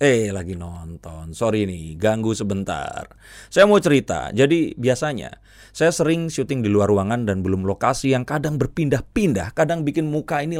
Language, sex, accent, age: Indonesian, male, native, 30-49